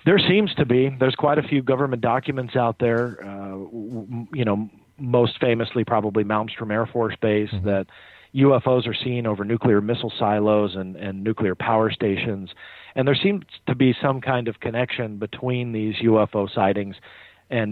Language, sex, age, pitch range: English, male, 40-59, 105-125 Hz